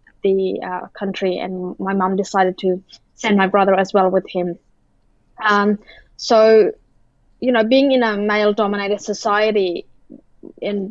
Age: 20-39